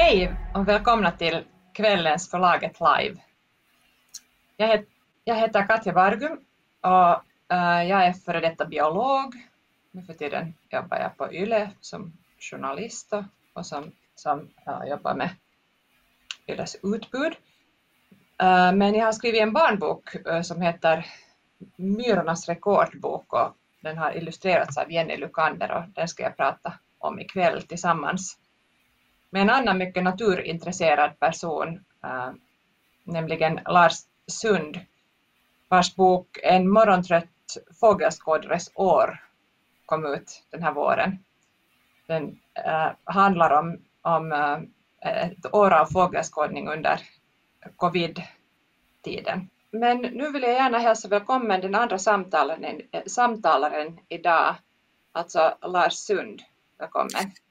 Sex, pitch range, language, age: female, 170-215 Hz, Swedish, 30-49